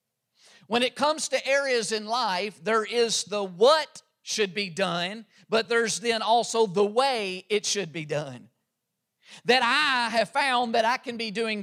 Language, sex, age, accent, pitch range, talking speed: English, male, 50-69, American, 210-250 Hz, 170 wpm